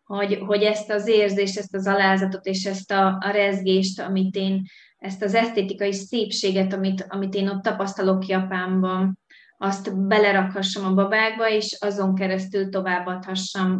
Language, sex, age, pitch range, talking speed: Hungarian, female, 20-39, 195-220 Hz, 145 wpm